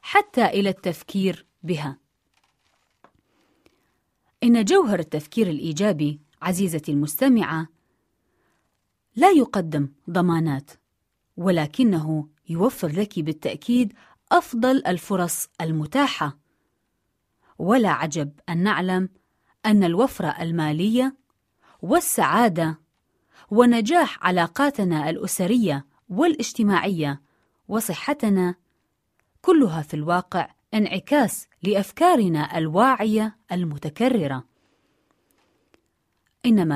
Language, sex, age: Arabic, female, 30-49